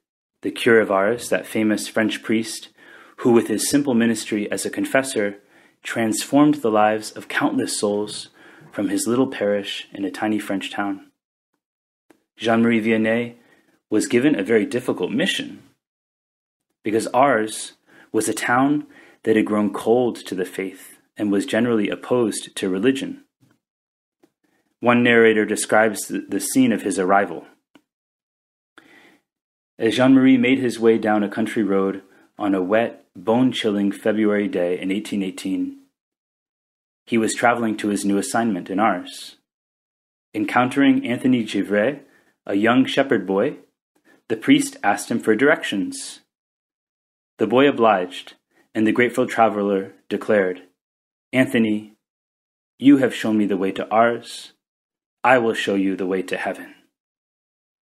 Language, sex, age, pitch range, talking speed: English, male, 30-49, 100-120 Hz, 135 wpm